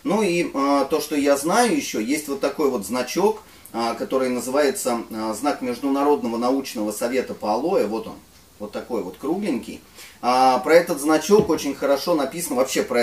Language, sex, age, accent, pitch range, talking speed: Russian, male, 30-49, native, 105-145 Hz, 155 wpm